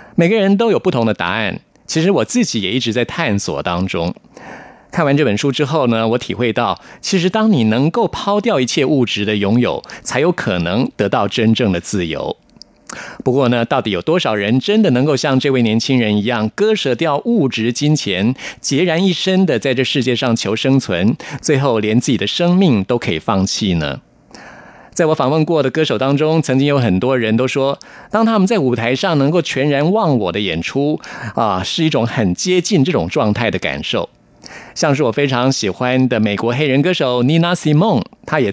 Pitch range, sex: 110-155 Hz, male